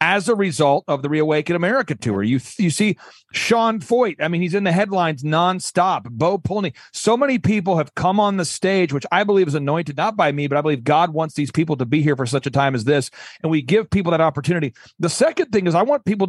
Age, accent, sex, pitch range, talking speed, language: 40-59, American, male, 145-185 Hz, 245 wpm, English